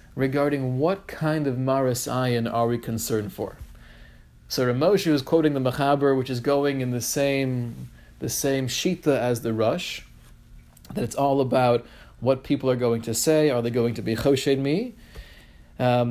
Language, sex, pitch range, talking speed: English, male, 125-170 Hz, 170 wpm